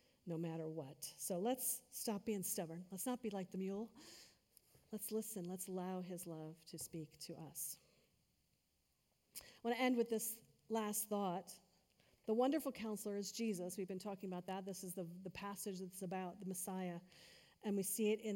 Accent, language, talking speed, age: American, English, 185 wpm, 40-59